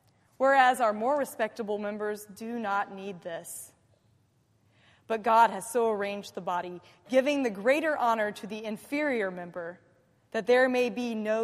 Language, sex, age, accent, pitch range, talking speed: English, female, 20-39, American, 185-245 Hz, 150 wpm